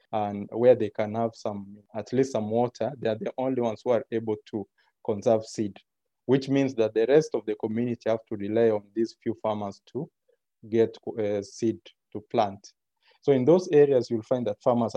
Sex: male